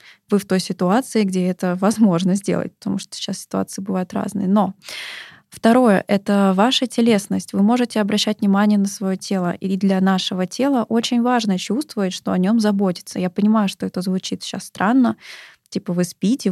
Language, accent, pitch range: Russian, native, 190-215 Hz